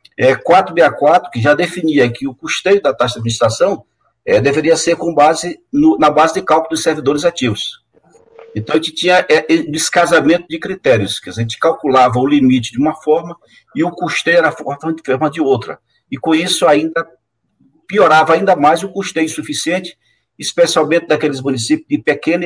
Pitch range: 125-165 Hz